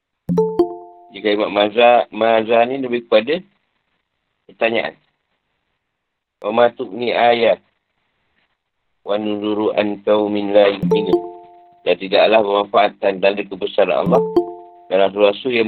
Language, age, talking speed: Malay, 50-69, 100 wpm